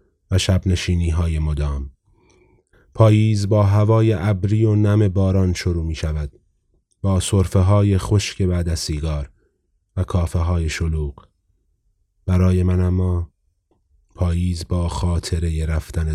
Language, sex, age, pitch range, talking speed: Persian, male, 30-49, 80-95 Hz, 115 wpm